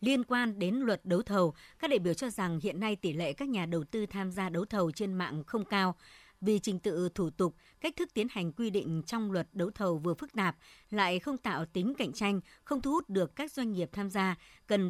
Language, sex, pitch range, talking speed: Vietnamese, male, 175-230 Hz, 245 wpm